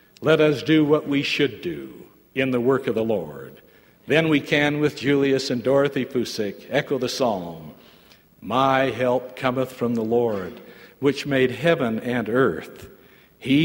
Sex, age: male, 60-79